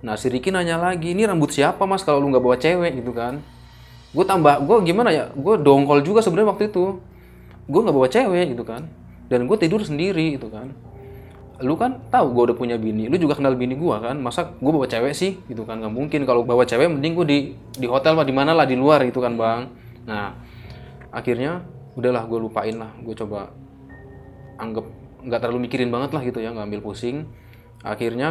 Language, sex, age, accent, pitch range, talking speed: Indonesian, male, 20-39, native, 110-135 Hz, 200 wpm